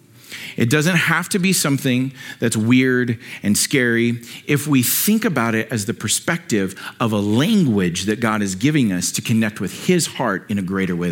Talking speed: 190 wpm